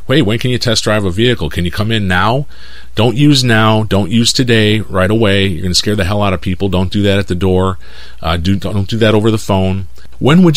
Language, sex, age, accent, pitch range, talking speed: English, male, 40-59, American, 80-110 Hz, 260 wpm